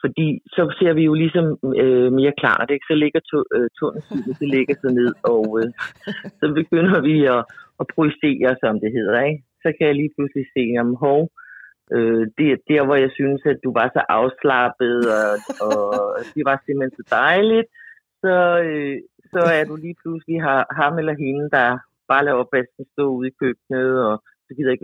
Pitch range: 125-165 Hz